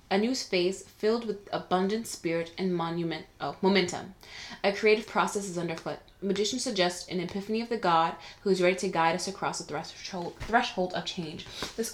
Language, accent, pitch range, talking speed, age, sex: English, American, 170-205 Hz, 170 wpm, 20-39, female